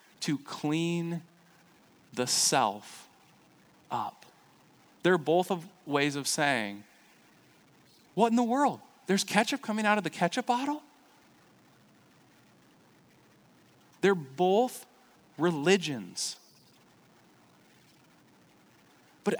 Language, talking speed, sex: English, 80 wpm, male